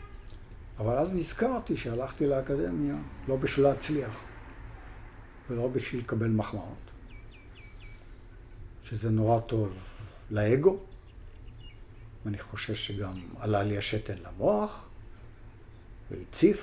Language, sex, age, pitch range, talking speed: Hebrew, male, 60-79, 100-125 Hz, 85 wpm